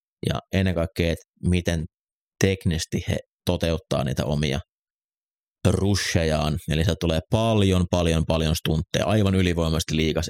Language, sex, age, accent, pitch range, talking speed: Finnish, male, 30-49, native, 80-95 Hz, 120 wpm